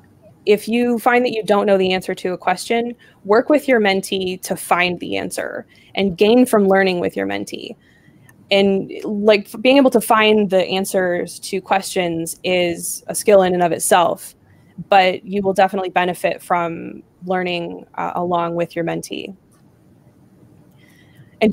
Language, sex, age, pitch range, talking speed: English, female, 20-39, 175-215 Hz, 160 wpm